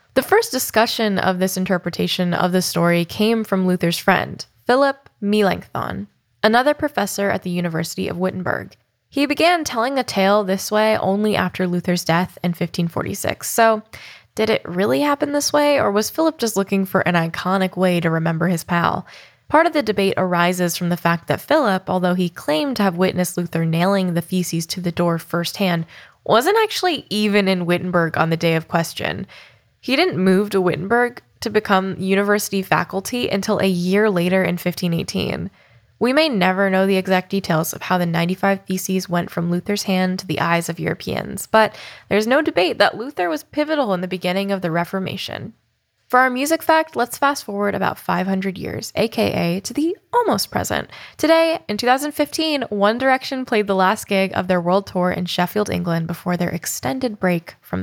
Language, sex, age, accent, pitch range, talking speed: English, female, 10-29, American, 175-225 Hz, 180 wpm